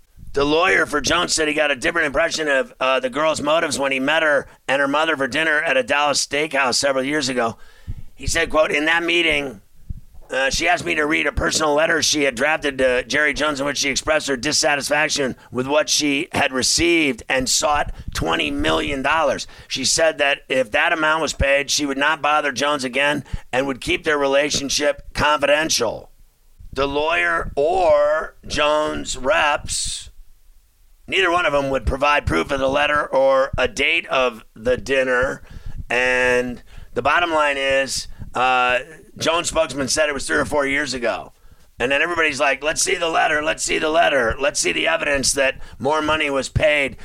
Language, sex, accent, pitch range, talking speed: English, male, American, 130-150 Hz, 185 wpm